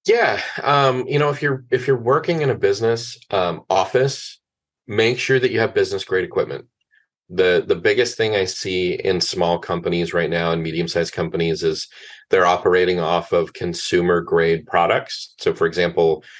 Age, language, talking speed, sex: 30-49, English, 175 wpm, male